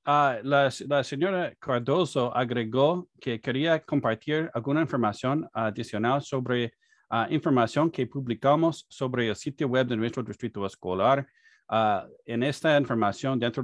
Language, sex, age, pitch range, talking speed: Spanish, male, 30-49, 120-145 Hz, 130 wpm